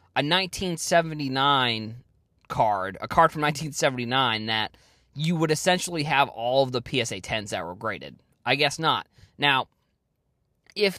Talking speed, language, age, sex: 135 wpm, English, 20-39, male